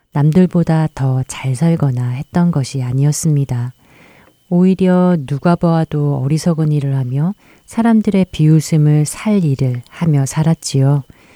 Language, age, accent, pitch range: Korean, 40-59, native, 135-165 Hz